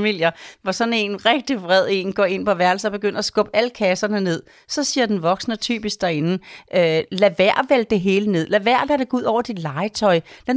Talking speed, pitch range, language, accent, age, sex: 220 wpm, 175-220 Hz, Danish, native, 40-59, female